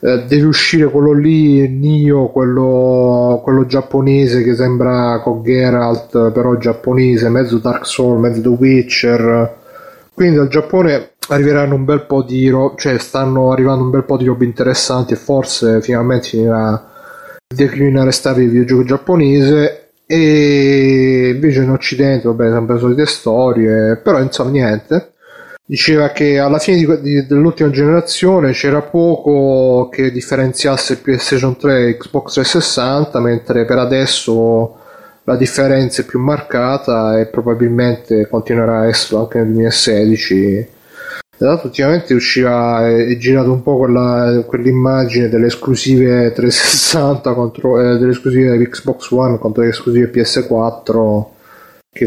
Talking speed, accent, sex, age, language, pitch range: 130 wpm, native, male, 30-49, Italian, 115-135 Hz